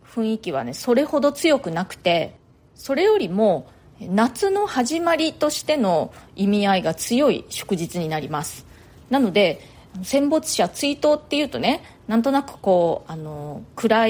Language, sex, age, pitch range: Japanese, female, 30-49, 180-265 Hz